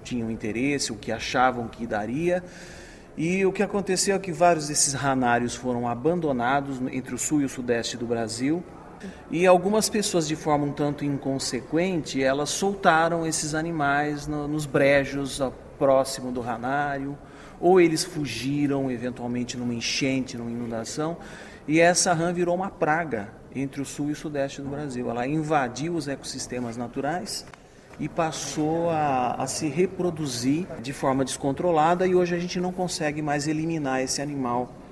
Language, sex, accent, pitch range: Chinese, male, Brazilian, 125-155 Hz